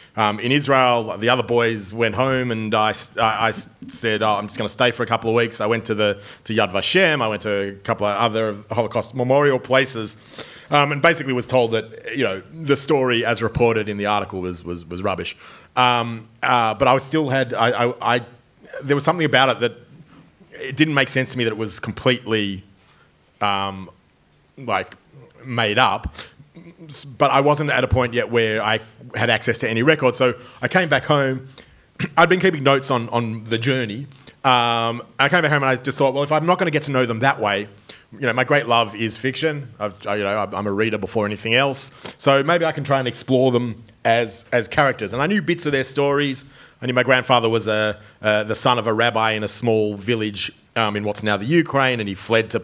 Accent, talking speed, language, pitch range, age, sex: Australian, 225 wpm, English, 110-135 Hz, 30-49, male